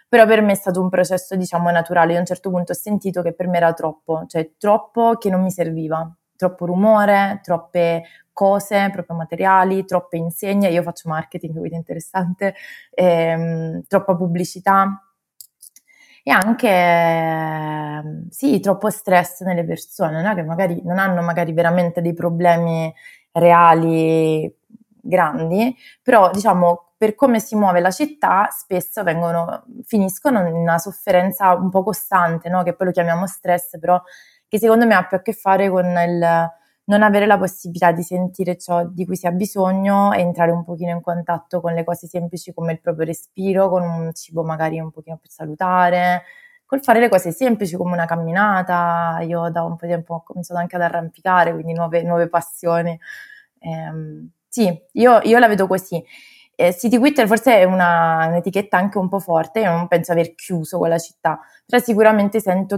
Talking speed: 170 wpm